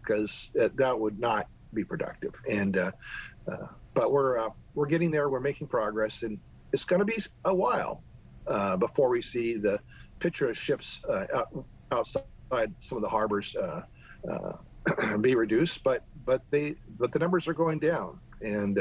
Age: 50-69